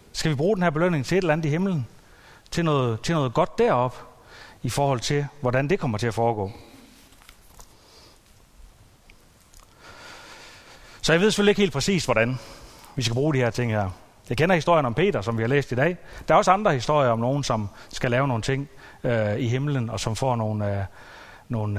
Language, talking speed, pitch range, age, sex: Danish, 205 wpm, 115-180 Hz, 30-49, male